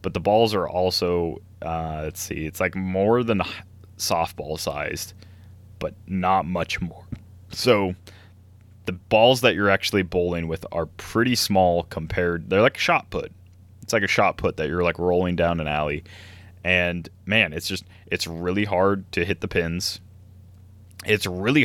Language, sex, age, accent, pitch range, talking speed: English, male, 20-39, American, 90-100 Hz, 165 wpm